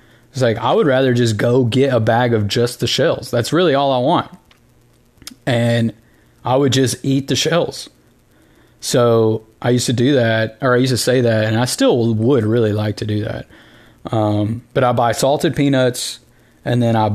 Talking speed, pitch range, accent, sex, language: 195 wpm, 115-135 Hz, American, male, English